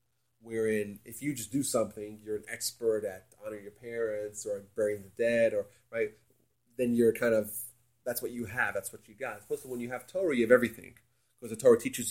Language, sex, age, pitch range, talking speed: English, male, 30-49, 115-150 Hz, 230 wpm